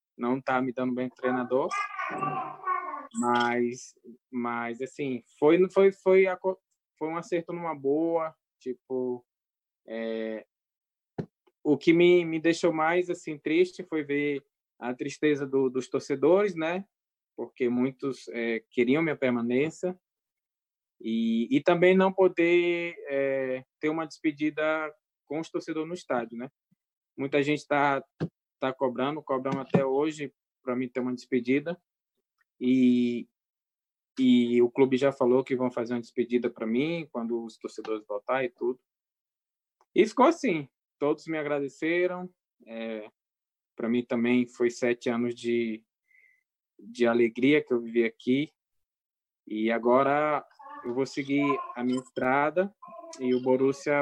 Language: English